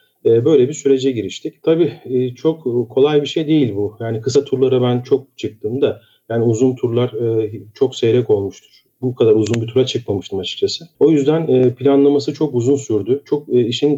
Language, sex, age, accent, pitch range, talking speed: Turkish, male, 40-59, native, 120-160 Hz, 165 wpm